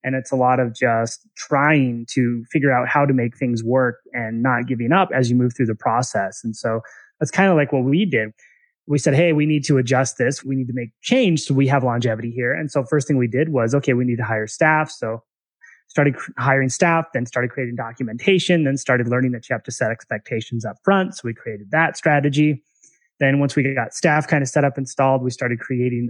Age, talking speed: 20-39, 235 wpm